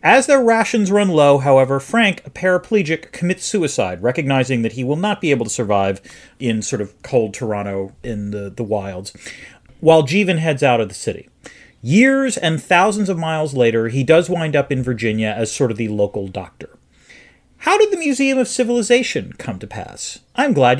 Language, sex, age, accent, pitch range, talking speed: English, male, 40-59, American, 130-220 Hz, 190 wpm